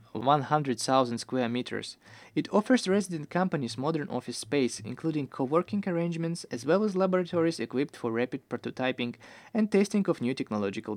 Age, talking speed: 20-39, 140 wpm